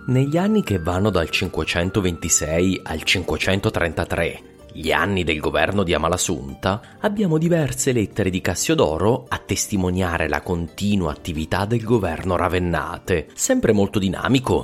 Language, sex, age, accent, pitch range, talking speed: English, male, 30-49, Italian, 85-105 Hz, 125 wpm